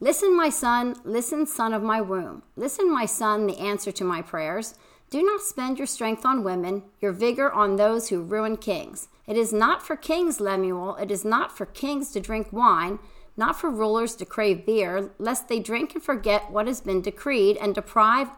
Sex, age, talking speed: female, 40-59, 200 wpm